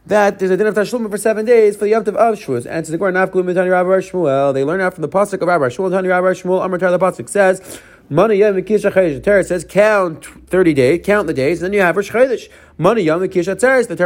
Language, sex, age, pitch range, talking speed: English, male, 30-49, 160-220 Hz, 235 wpm